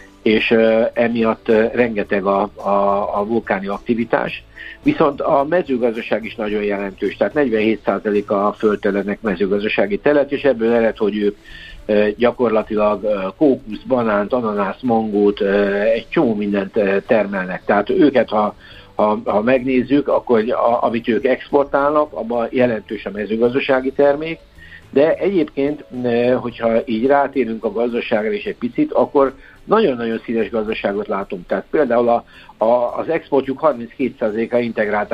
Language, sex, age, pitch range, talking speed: Hungarian, male, 60-79, 105-125 Hz, 125 wpm